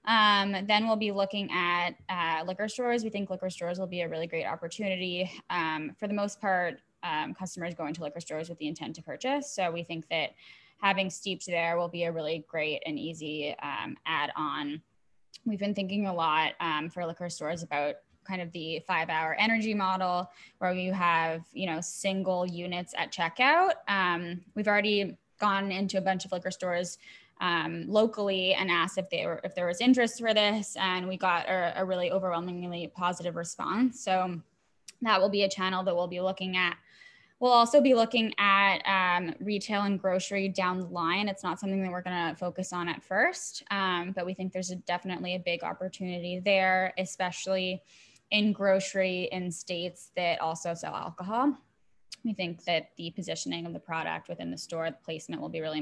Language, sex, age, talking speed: English, female, 10-29, 190 wpm